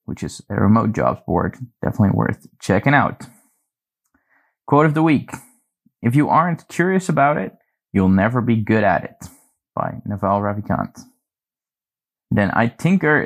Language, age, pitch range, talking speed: English, 20-39, 105-130 Hz, 145 wpm